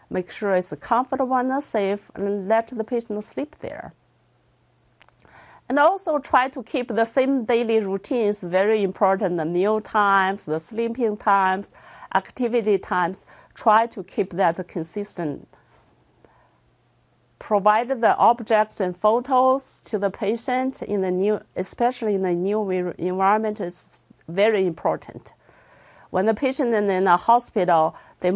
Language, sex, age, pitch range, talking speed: English, female, 50-69, 185-235 Hz, 135 wpm